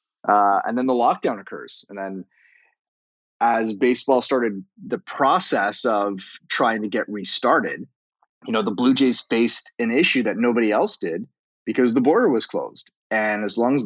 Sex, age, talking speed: male, 20-39, 170 wpm